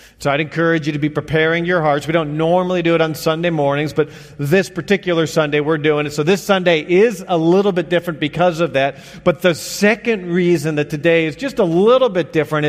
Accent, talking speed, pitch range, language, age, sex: American, 220 wpm, 145-180 Hz, English, 40-59, male